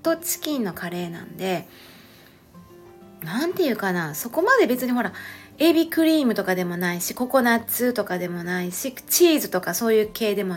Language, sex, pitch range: Japanese, female, 180-270 Hz